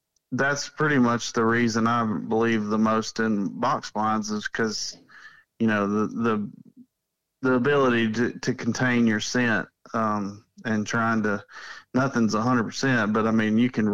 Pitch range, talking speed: 110-125 Hz, 165 wpm